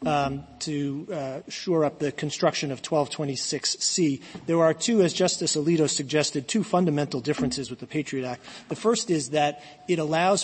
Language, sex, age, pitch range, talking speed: English, male, 30-49, 145-170 Hz, 165 wpm